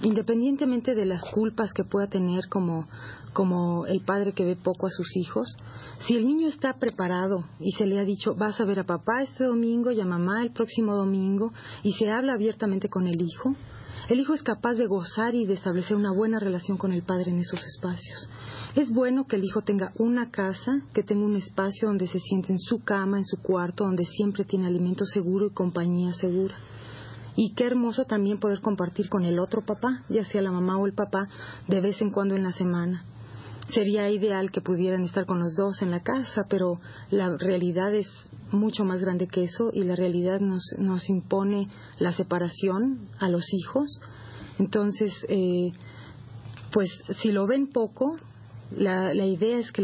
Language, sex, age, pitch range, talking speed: Spanish, female, 40-59, 180-215 Hz, 195 wpm